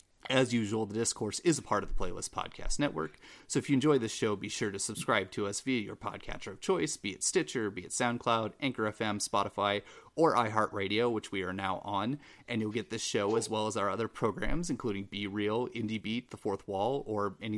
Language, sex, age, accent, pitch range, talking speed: English, male, 30-49, American, 100-125 Hz, 225 wpm